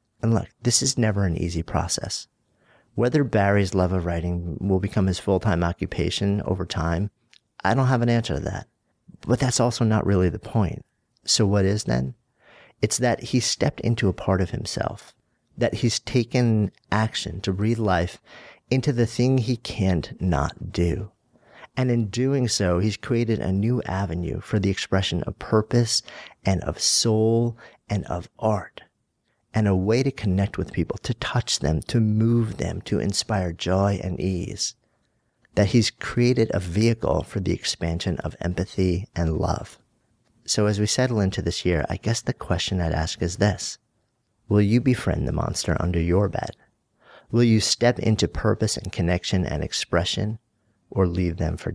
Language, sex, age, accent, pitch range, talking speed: English, male, 40-59, American, 90-115 Hz, 170 wpm